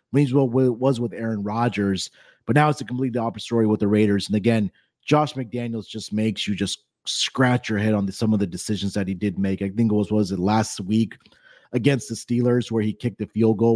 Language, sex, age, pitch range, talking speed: English, male, 30-49, 105-130 Hz, 230 wpm